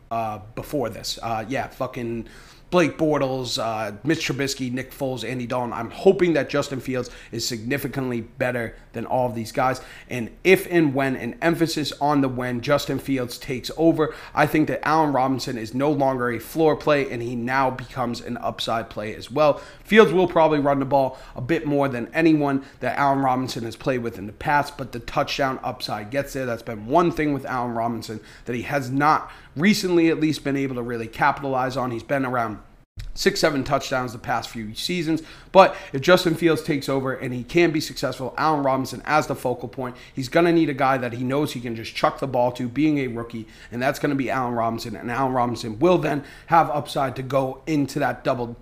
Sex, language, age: male, English, 30-49